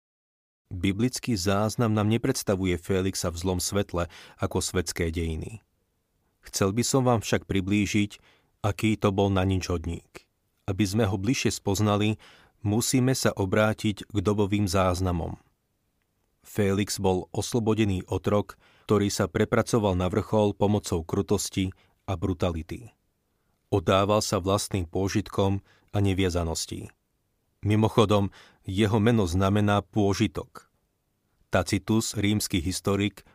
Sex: male